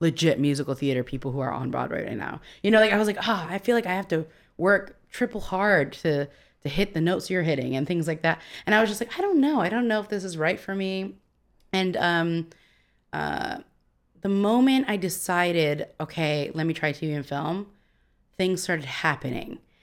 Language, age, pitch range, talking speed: English, 20-39, 145-195 Hz, 220 wpm